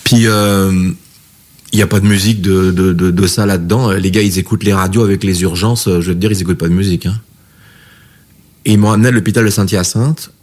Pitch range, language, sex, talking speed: 90-110 Hz, French, male, 225 wpm